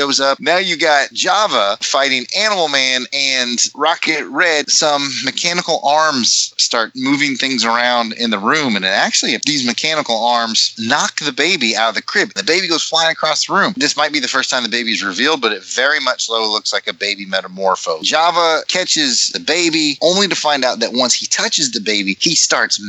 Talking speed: 205 wpm